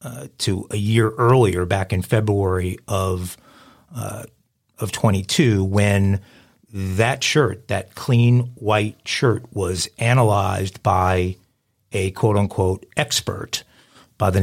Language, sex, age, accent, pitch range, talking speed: English, male, 50-69, American, 100-125 Hz, 115 wpm